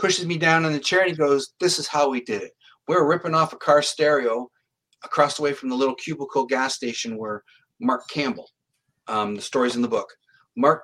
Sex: male